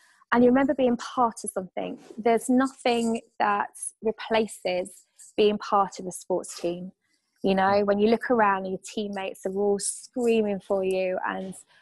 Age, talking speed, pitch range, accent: 20-39, 160 wpm, 200-240 Hz, British